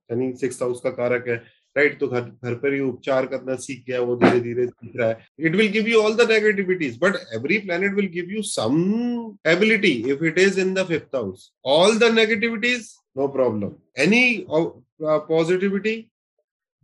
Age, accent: 30-49, native